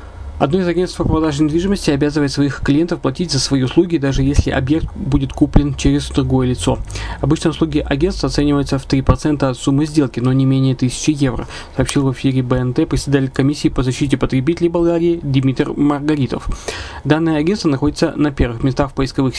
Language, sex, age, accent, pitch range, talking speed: Russian, male, 20-39, native, 130-155 Hz, 170 wpm